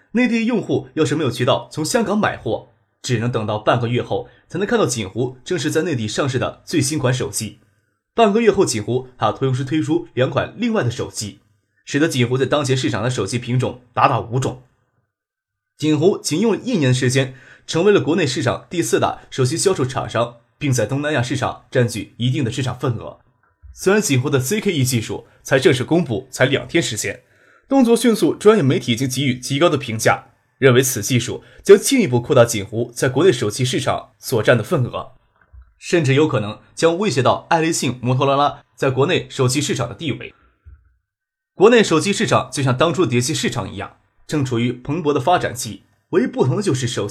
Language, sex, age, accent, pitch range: Chinese, male, 20-39, native, 120-155 Hz